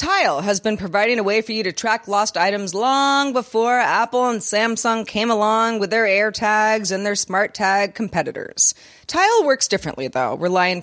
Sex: female